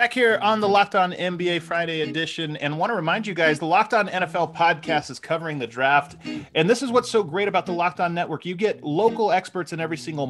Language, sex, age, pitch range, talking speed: English, male, 30-49, 135-190 Hz, 245 wpm